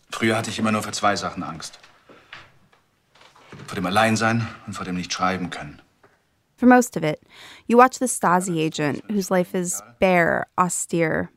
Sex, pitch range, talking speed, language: female, 155-210 Hz, 120 wpm, English